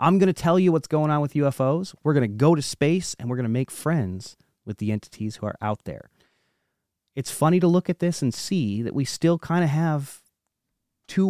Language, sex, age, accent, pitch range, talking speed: English, male, 30-49, American, 115-155 Hz, 235 wpm